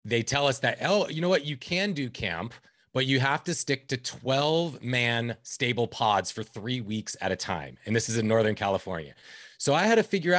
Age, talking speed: 30-49, 225 wpm